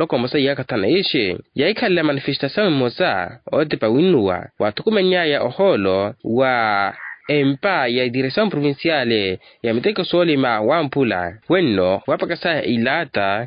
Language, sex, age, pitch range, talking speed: Portuguese, male, 20-39, 110-175 Hz, 105 wpm